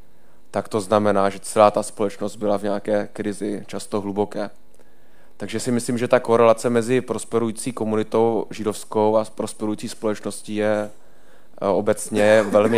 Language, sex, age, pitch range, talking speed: Czech, male, 20-39, 100-115 Hz, 135 wpm